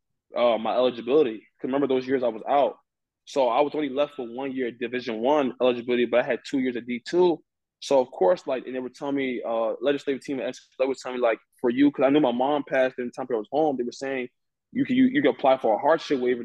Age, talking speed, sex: 20-39, 265 wpm, male